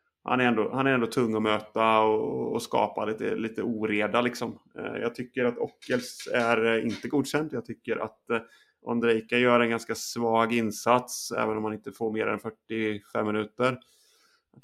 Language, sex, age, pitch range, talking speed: Swedish, male, 30-49, 110-120 Hz, 170 wpm